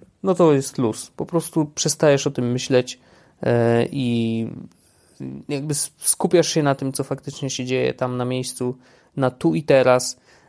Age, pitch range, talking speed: 20-39, 125-145 Hz, 155 wpm